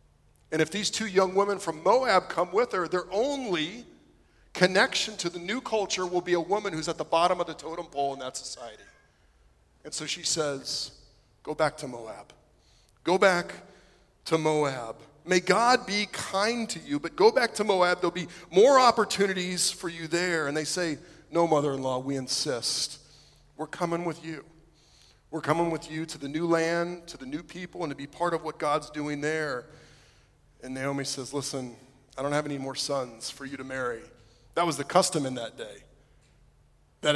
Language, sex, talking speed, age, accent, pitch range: English, male, 190 wpm, 40-59, American, 140-175 Hz